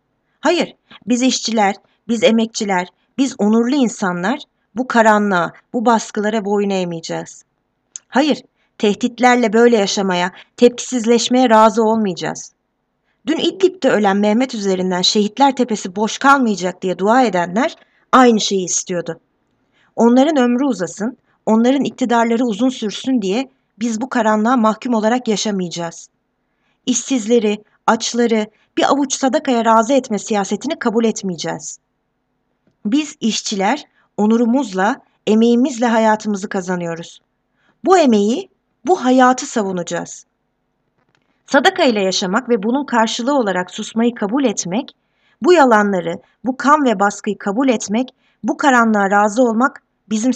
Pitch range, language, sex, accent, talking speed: 205-260 Hz, Turkish, female, native, 110 wpm